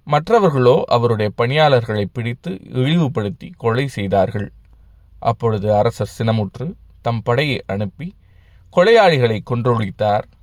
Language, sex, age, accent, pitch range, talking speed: Tamil, male, 20-39, native, 100-130 Hz, 85 wpm